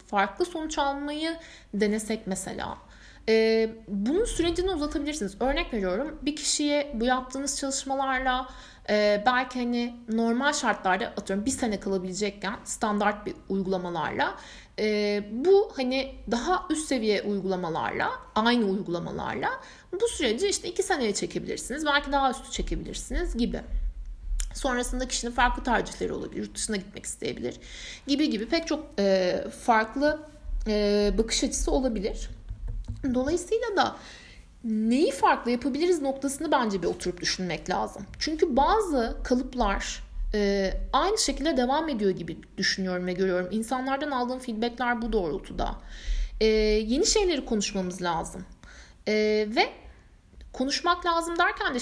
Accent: native